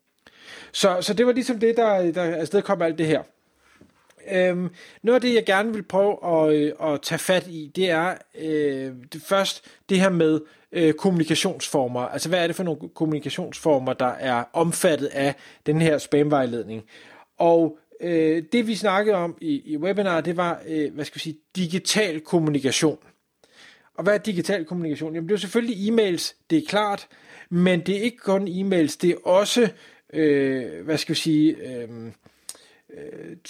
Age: 30-49